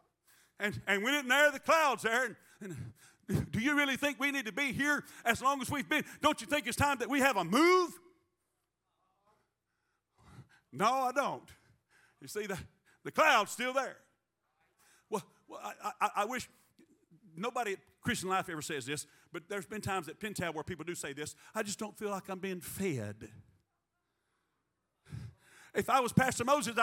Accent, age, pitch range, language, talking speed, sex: American, 50-69, 210-295 Hz, English, 180 wpm, male